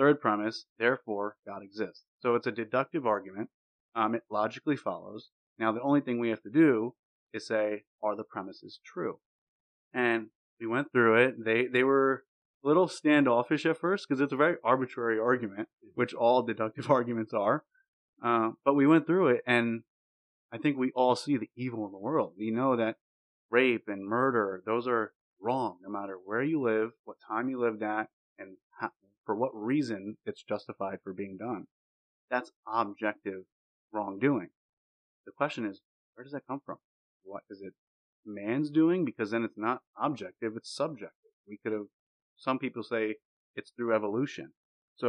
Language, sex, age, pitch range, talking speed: English, male, 30-49, 105-135 Hz, 175 wpm